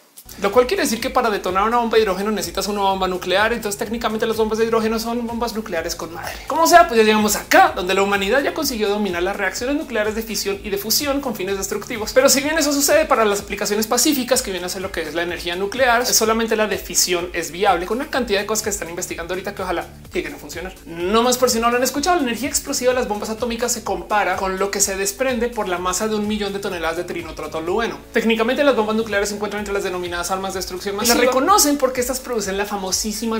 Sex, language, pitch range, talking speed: male, Spanish, 195-250 Hz, 255 wpm